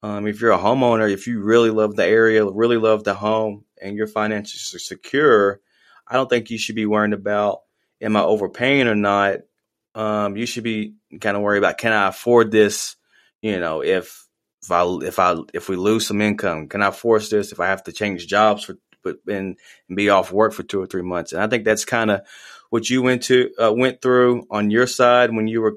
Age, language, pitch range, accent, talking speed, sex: 20-39, English, 100-115 Hz, American, 230 wpm, male